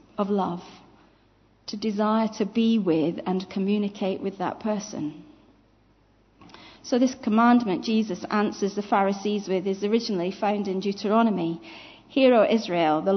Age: 40-59